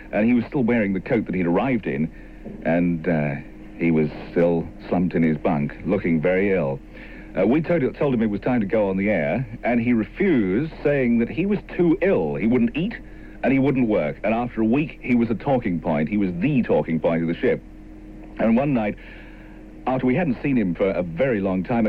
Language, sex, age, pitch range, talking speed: English, male, 50-69, 95-135 Hz, 225 wpm